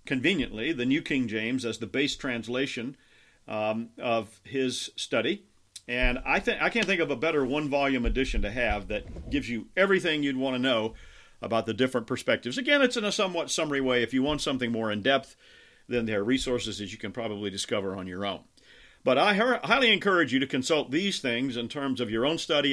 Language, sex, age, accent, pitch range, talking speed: English, male, 50-69, American, 115-140 Hz, 210 wpm